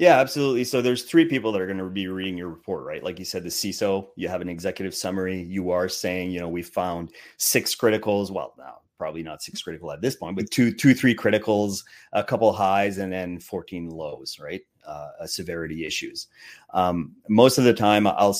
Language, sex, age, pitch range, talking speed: English, male, 30-49, 90-110 Hz, 220 wpm